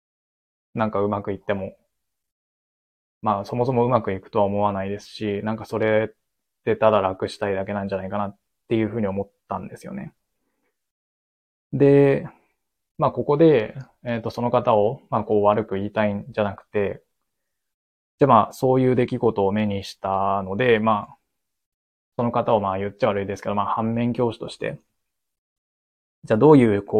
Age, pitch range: 20-39, 100-120 Hz